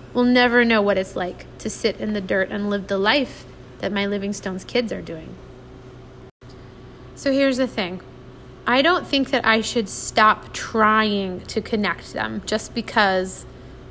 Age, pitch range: 30-49, 200-245 Hz